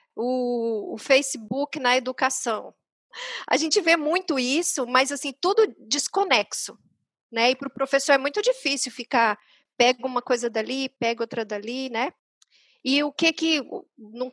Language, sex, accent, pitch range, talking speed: Portuguese, female, Brazilian, 235-290 Hz, 150 wpm